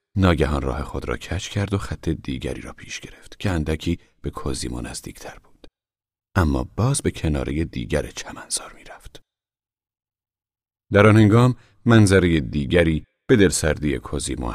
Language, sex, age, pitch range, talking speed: Persian, male, 40-59, 75-110 Hz, 140 wpm